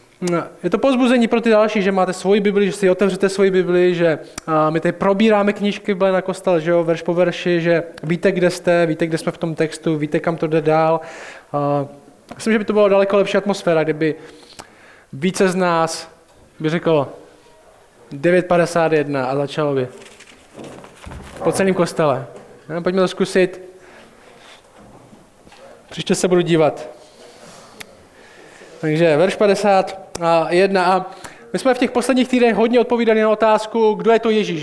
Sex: male